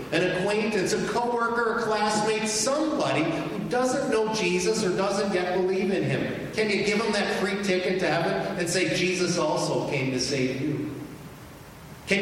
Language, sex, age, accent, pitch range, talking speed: English, male, 50-69, American, 130-180 Hz, 170 wpm